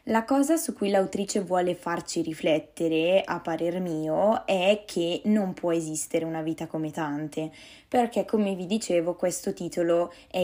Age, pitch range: 10-29, 160-185 Hz